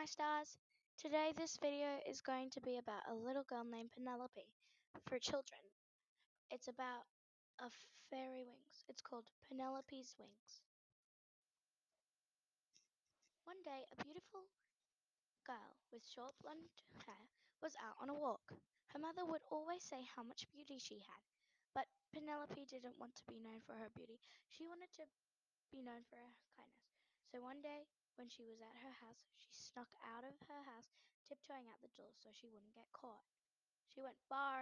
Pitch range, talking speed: 245-310 Hz, 165 wpm